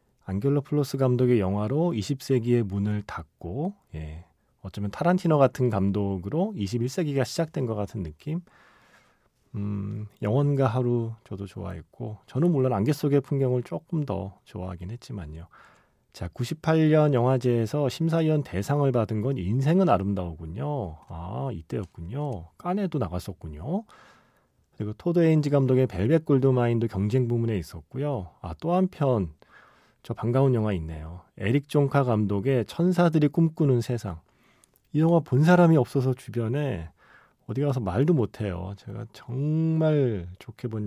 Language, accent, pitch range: Korean, native, 100-145 Hz